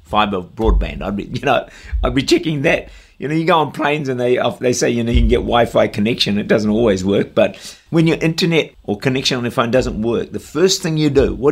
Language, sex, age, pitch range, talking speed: English, male, 50-69, 95-135 Hz, 250 wpm